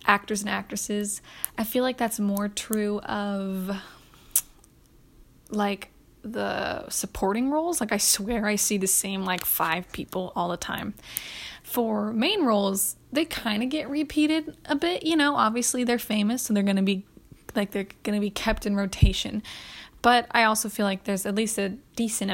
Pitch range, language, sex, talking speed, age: 205-270 Hz, English, female, 175 wpm, 10-29